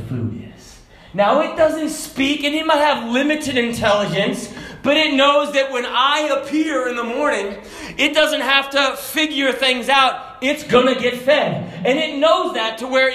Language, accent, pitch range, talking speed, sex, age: English, American, 200-300 Hz, 175 wpm, male, 30-49